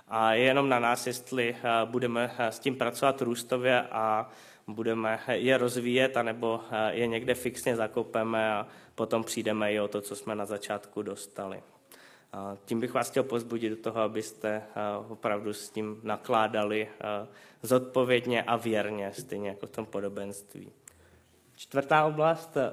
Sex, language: male, Czech